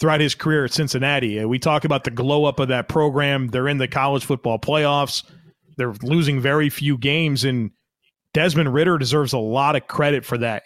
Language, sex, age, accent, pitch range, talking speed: English, male, 30-49, American, 140-165 Hz, 205 wpm